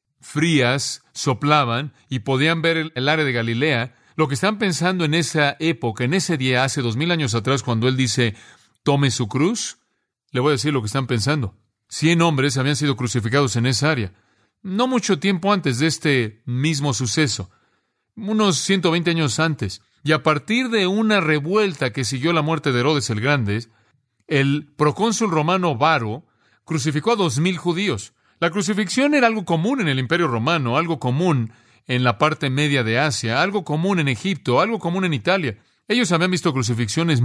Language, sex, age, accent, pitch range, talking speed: Spanish, male, 40-59, Mexican, 125-170 Hz, 175 wpm